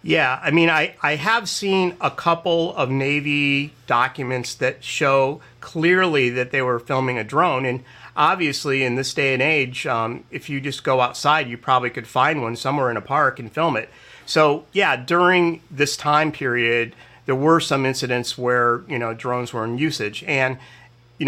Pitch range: 130-160 Hz